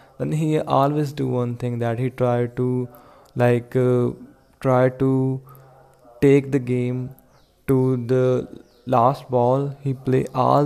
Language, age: English, 20-39